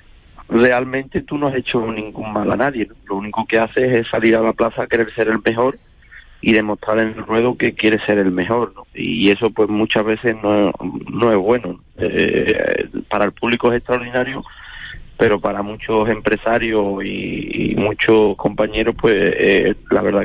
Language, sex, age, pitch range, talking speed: Spanish, male, 30-49, 100-120 Hz, 185 wpm